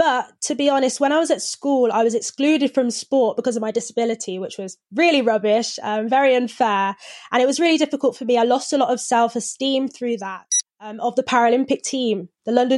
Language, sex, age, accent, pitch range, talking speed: English, female, 20-39, British, 220-285 Hz, 220 wpm